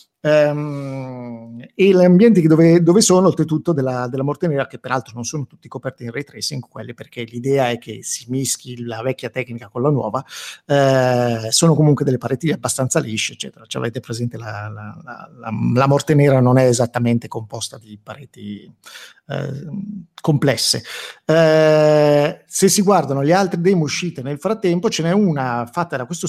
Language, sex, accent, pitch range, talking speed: Italian, male, native, 125-160 Hz, 175 wpm